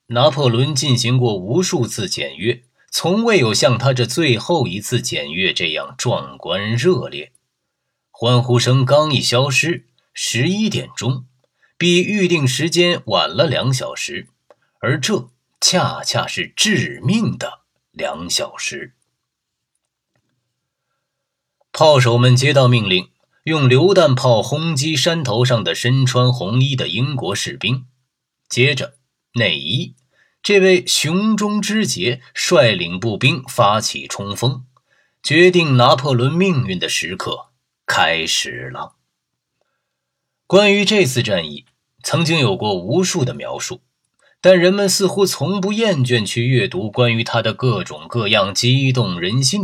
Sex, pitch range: male, 125-175 Hz